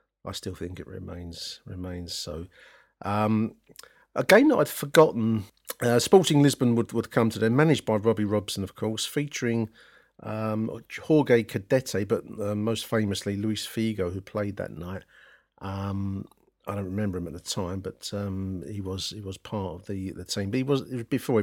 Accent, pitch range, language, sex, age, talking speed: British, 100-125 Hz, English, male, 50-69, 175 wpm